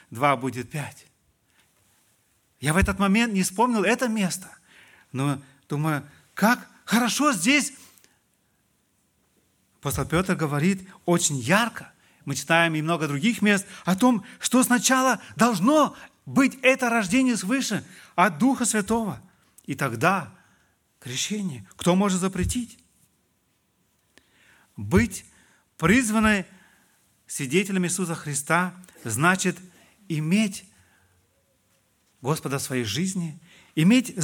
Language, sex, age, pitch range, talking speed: Russian, male, 40-59, 160-225 Hz, 100 wpm